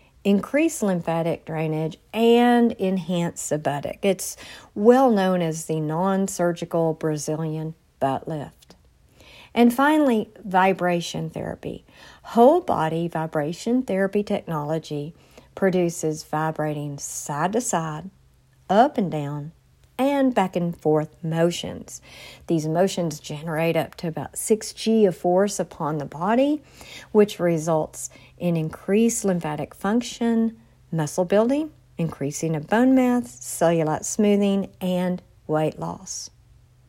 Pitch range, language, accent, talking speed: 155-210 Hz, English, American, 110 wpm